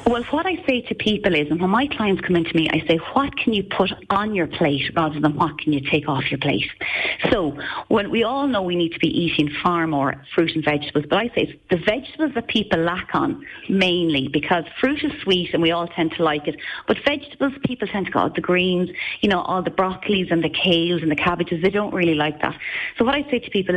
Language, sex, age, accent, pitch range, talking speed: English, female, 30-49, Irish, 160-220 Hz, 255 wpm